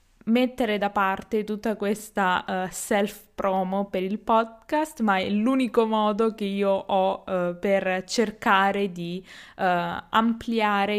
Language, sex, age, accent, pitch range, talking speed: Italian, female, 20-39, native, 190-235 Hz, 130 wpm